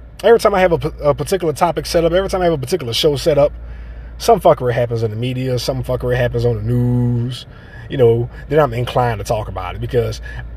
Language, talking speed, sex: English, 235 wpm, male